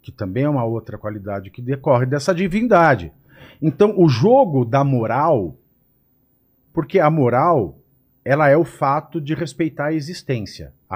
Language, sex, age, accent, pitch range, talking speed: Portuguese, male, 50-69, Brazilian, 110-135 Hz, 140 wpm